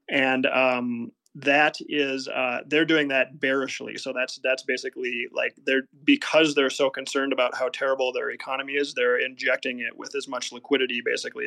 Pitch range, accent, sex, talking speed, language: 135-160 Hz, American, male, 175 wpm, English